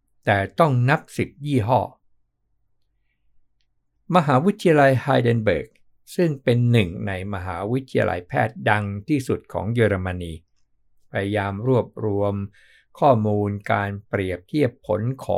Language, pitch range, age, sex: Thai, 100-130 Hz, 60-79, male